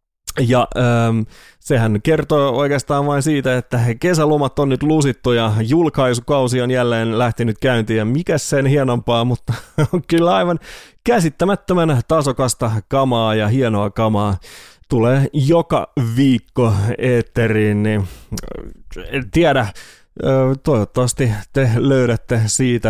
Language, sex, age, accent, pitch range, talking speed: English, male, 30-49, Finnish, 120-155 Hz, 105 wpm